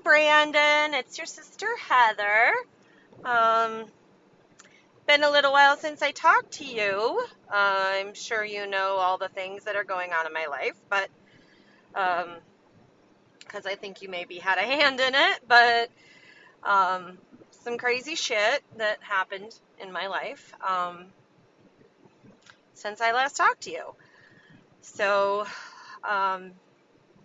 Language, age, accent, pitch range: English, 30-49, American, 185-235 Hz